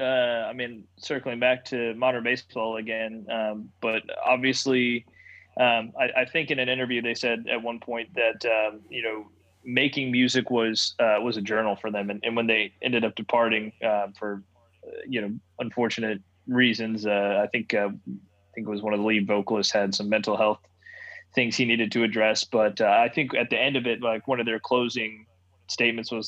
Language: English